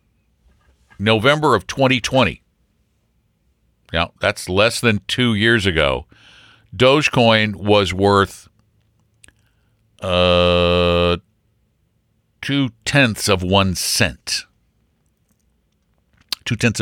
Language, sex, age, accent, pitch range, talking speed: English, male, 60-79, American, 100-140 Hz, 70 wpm